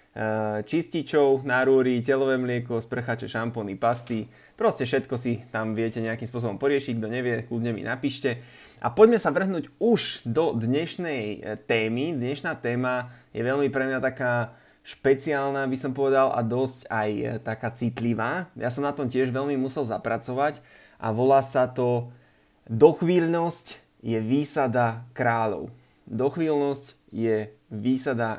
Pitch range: 120-145 Hz